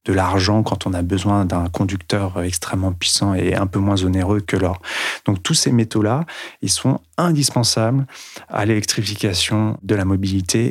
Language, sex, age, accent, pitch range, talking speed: French, male, 30-49, French, 95-115 Hz, 165 wpm